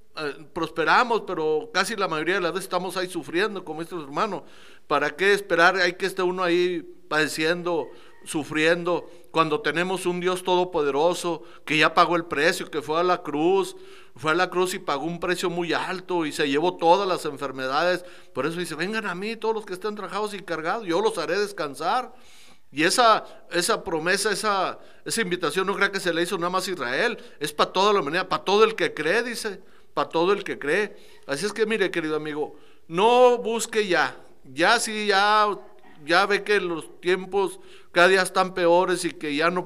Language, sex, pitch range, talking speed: Spanish, male, 170-210 Hz, 195 wpm